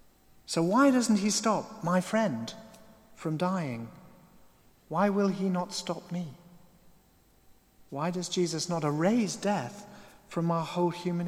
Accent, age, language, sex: British, 40-59, English, male